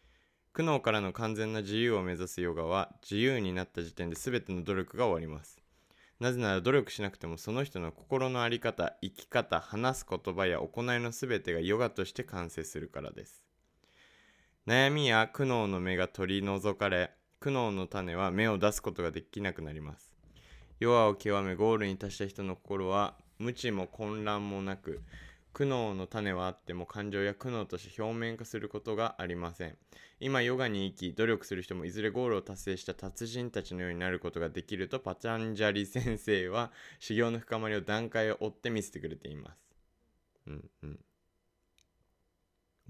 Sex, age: male, 20-39